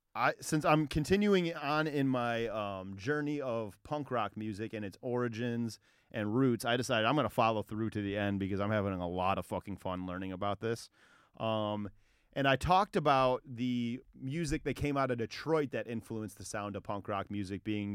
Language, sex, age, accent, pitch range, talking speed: English, male, 30-49, American, 105-125 Hz, 195 wpm